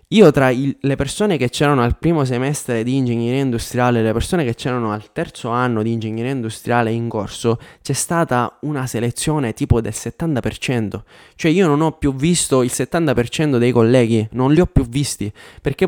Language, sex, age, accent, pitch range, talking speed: Italian, male, 20-39, native, 115-135 Hz, 180 wpm